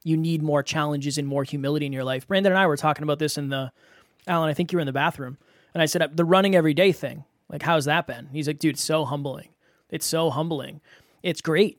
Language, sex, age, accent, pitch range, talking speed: English, male, 20-39, American, 145-180 Hz, 255 wpm